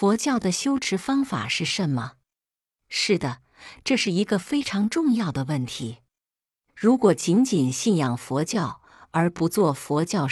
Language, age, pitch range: Chinese, 50-69, 130-200 Hz